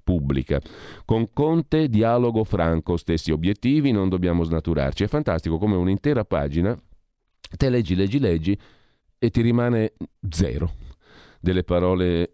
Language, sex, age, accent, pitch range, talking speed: Italian, male, 40-59, native, 80-115 Hz, 120 wpm